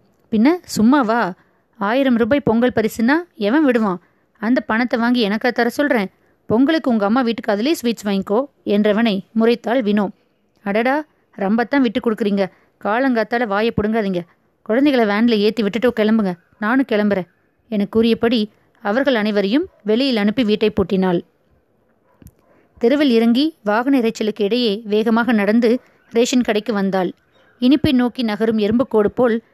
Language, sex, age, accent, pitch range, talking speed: Tamil, female, 20-39, native, 210-250 Hz, 120 wpm